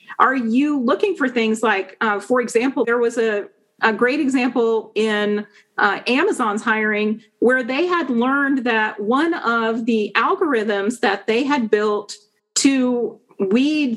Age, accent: 40-59, American